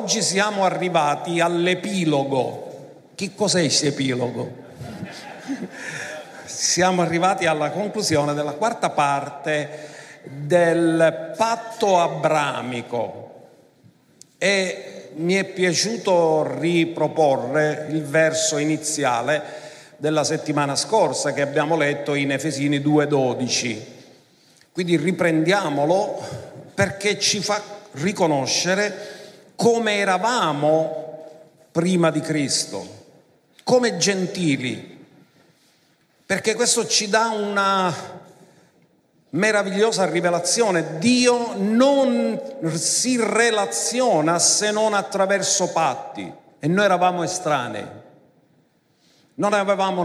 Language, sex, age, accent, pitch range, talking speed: Italian, male, 50-69, native, 155-200 Hz, 85 wpm